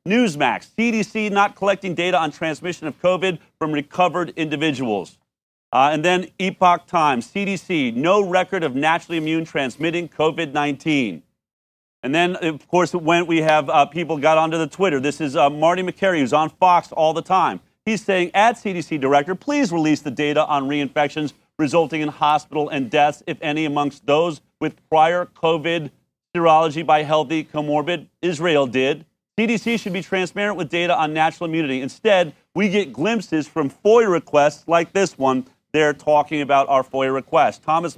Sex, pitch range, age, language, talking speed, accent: male, 150-190 Hz, 40-59, English, 165 wpm, American